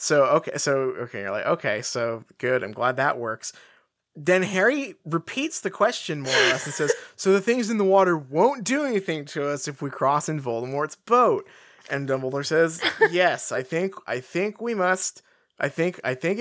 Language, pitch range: English, 155-235 Hz